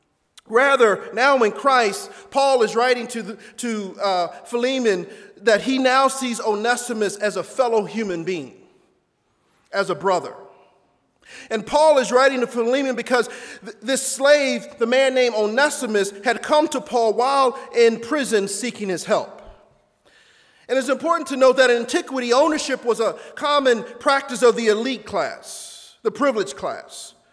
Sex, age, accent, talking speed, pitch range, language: male, 40-59, American, 145 wpm, 220-265 Hz, English